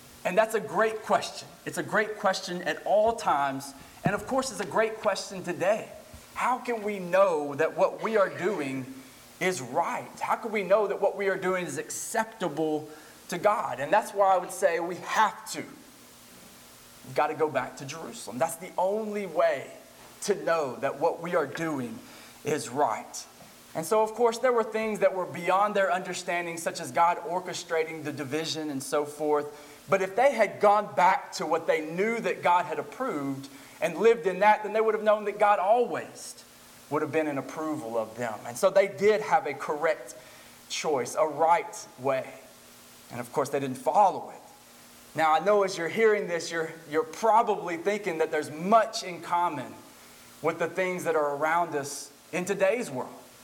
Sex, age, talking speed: male, 20-39, 190 wpm